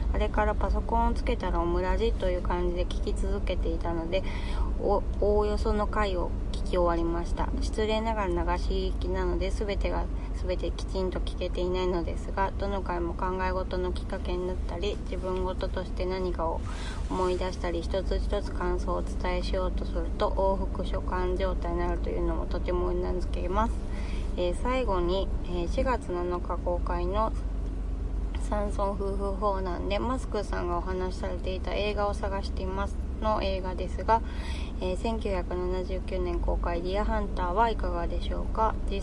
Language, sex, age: Japanese, female, 20-39